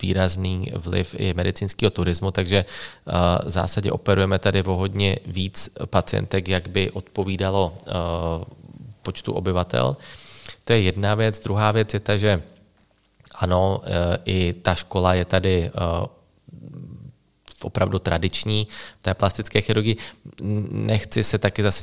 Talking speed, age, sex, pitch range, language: 120 wpm, 20-39, male, 95-105 Hz, Czech